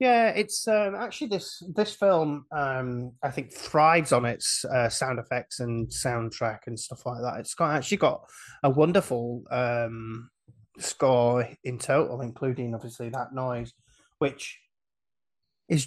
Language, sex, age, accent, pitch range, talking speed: English, male, 20-39, British, 125-160 Hz, 145 wpm